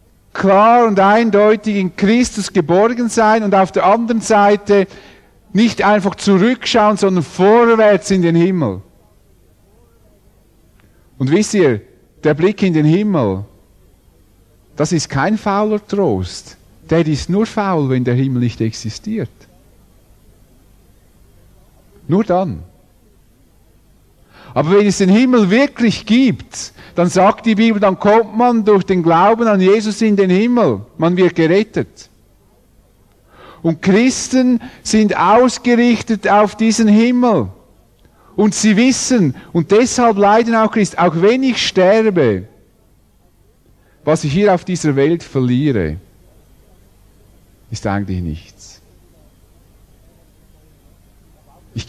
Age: 50-69